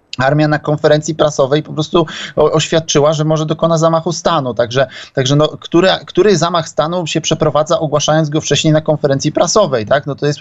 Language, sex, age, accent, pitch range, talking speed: Polish, male, 20-39, native, 145-175 Hz, 180 wpm